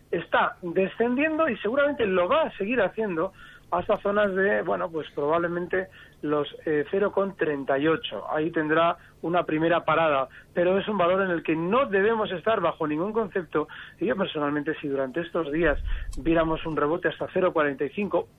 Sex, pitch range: male, 155-200 Hz